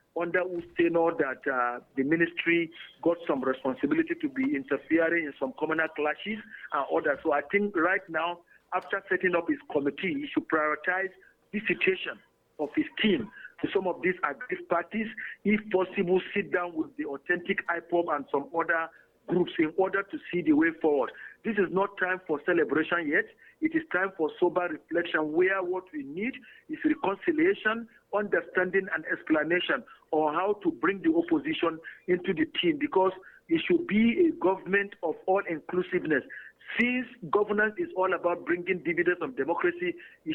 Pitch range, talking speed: 170-230 Hz, 170 wpm